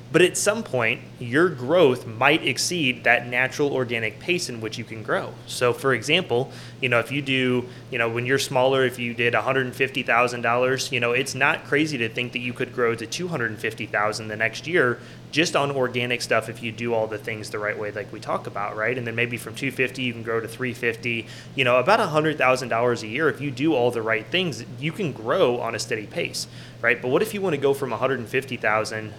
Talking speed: 220 wpm